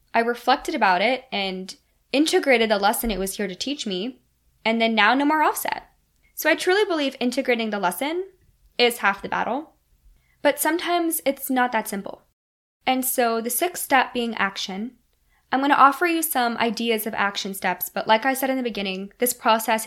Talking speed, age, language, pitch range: 190 wpm, 10-29, English, 195-240 Hz